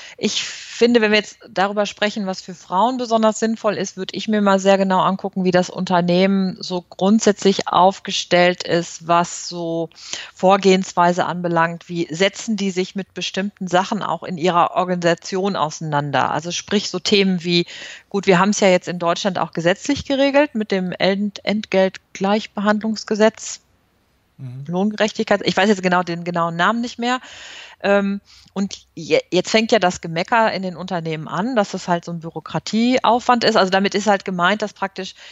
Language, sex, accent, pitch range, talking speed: German, female, German, 175-210 Hz, 165 wpm